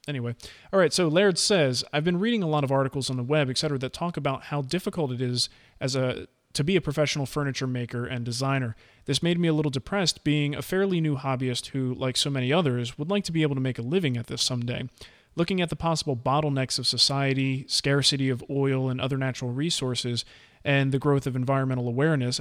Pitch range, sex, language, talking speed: 125-155 Hz, male, English, 220 wpm